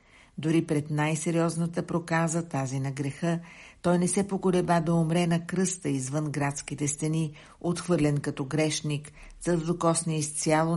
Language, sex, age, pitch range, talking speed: Bulgarian, female, 60-79, 145-165 Hz, 135 wpm